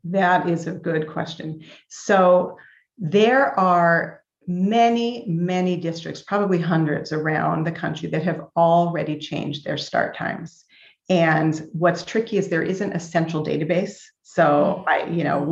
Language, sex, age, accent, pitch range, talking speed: English, female, 40-59, American, 160-195 Hz, 140 wpm